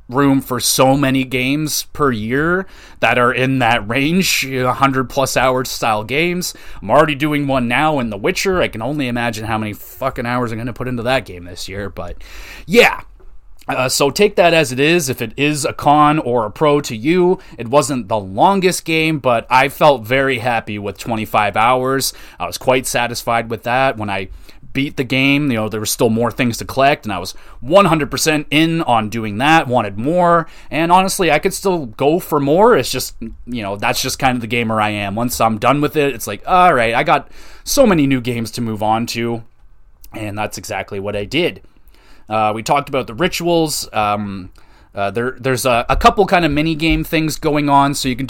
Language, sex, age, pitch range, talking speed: English, male, 30-49, 115-150 Hz, 210 wpm